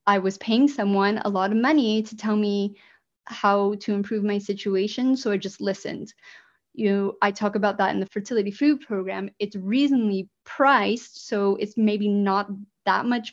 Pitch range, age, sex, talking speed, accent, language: 195-230 Hz, 20-39, female, 180 wpm, American, English